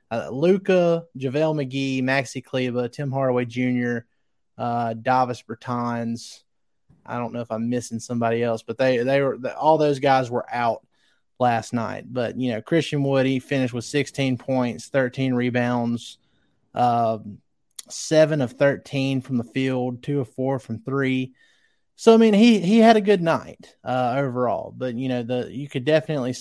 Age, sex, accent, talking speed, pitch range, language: 30-49, male, American, 165 wpm, 120-145 Hz, English